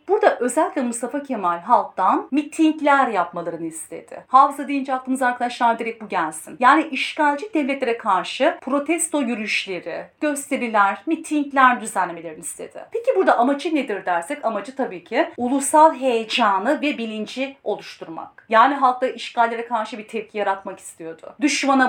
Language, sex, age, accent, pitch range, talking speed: Turkish, female, 40-59, native, 210-275 Hz, 130 wpm